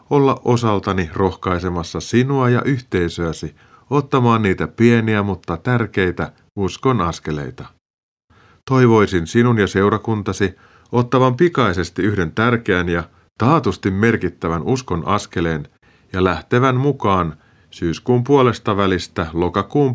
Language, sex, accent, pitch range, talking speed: Finnish, male, native, 90-120 Hz, 100 wpm